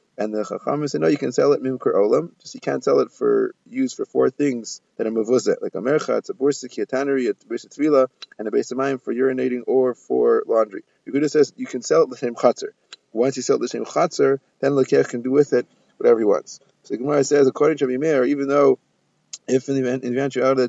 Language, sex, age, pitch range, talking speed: English, male, 30-49, 130-180 Hz, 250 wpm